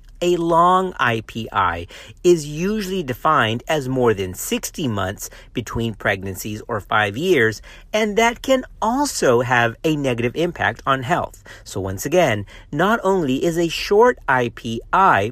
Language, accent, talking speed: English, American, 135 wpm